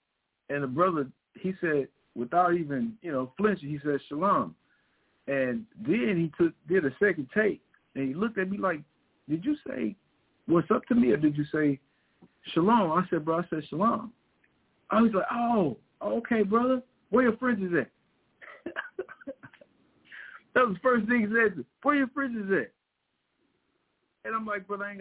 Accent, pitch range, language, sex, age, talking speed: American, 145-215 Hz, English, male, 50-69, 180 wpm